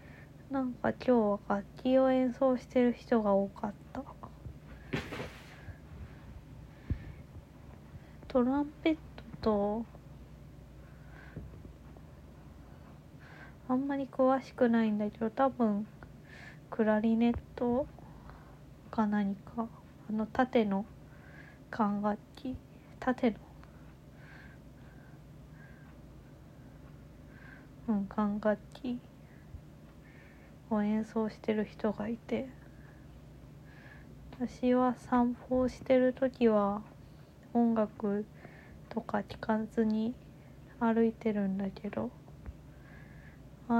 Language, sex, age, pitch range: Japanese, female, 20-39, 210-245 Hz